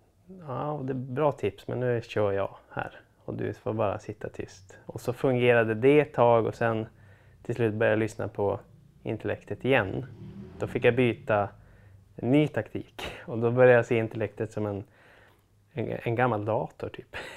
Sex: male